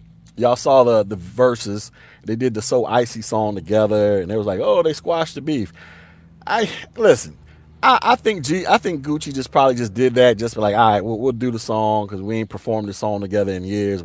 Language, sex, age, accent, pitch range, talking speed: English, male, 30-49, American, 105-135 Hz, 230 wpm